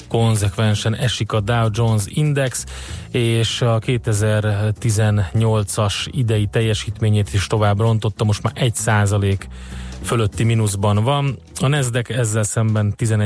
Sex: male